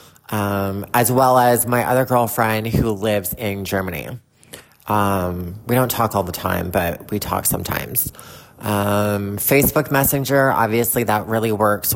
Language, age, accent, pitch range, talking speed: English, 30-49, American, 100-125 Hz, 145 wpm